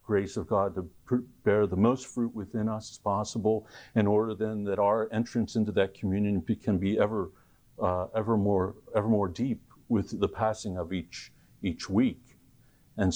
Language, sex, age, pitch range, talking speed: English, male, 50-69, 95-120 Hz, 175 wpm